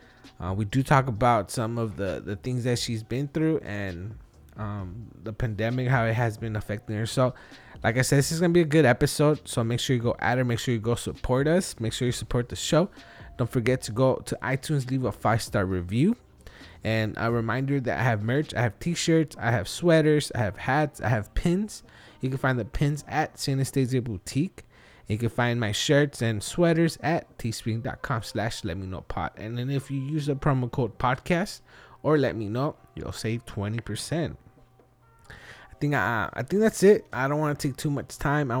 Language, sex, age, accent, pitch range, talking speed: English, male, 20-39, American, 115-145 Hz, 220 wpm